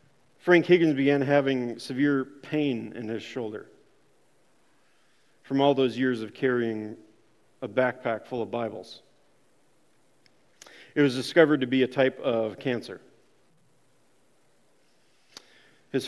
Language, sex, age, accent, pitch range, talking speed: English, male, 40-59, American, 120-145 Hz, 110 wpm